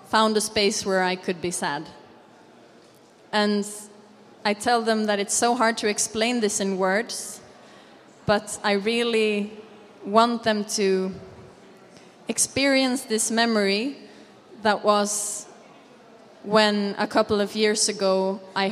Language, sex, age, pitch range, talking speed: German, female, 20-39, 195-220 Hz, 125 wpm